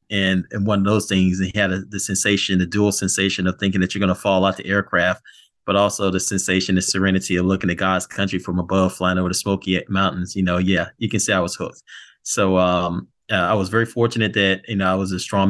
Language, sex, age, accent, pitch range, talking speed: English, male, 30-49, American, 95-100 Hz, 250 wpm